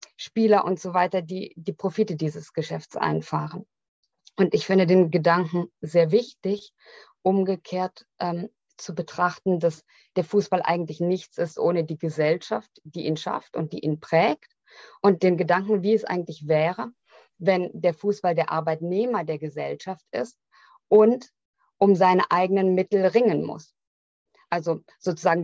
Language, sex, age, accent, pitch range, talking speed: German, female, 20-39, German, 165-200 Hz, 145 wpm